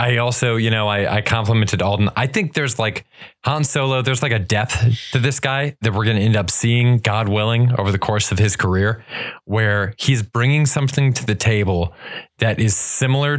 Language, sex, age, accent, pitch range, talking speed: English, male, 20-39, American, 100-115 Hz, 205 wpm